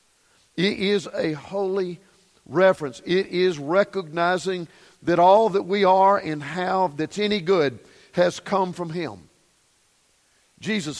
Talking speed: 125 wpm